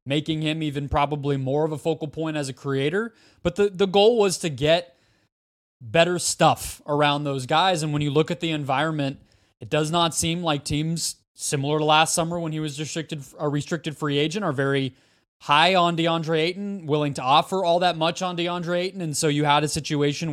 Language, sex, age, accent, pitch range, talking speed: English, male, 20-39, American, 135-165 Hz, 205 wpm